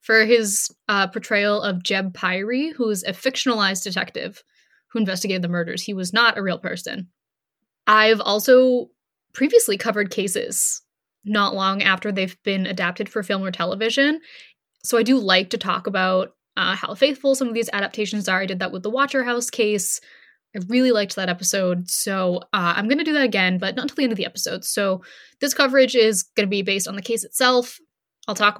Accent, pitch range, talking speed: American, 190-245 Hz, 200 wpm